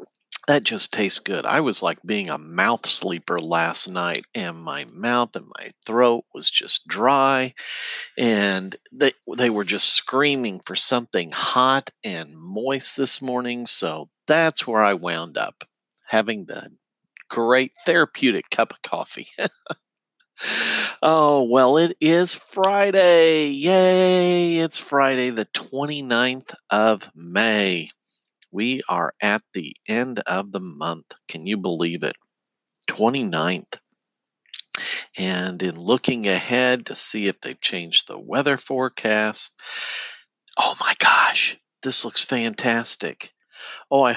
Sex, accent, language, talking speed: male, American, English, 125 wpm